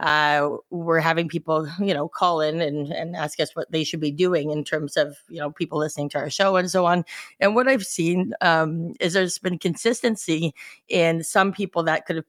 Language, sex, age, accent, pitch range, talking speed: English, female, 30-49, American, 150-180 Hz, 220 wpm